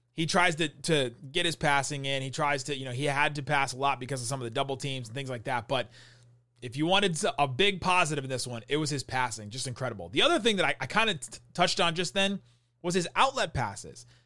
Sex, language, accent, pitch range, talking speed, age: male, English, American, 125-180 Hz, 265 wpm, 30-49